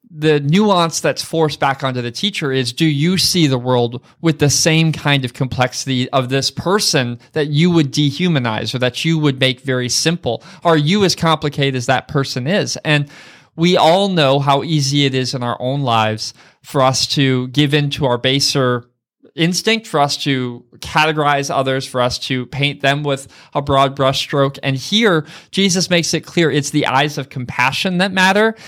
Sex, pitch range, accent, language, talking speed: male, 130-160 Hz, American, English, 185 wpm